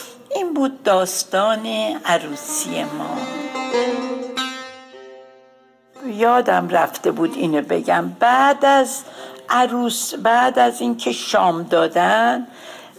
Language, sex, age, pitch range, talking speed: Persian, female, 60-79, 175-260 Hz, 85 wpm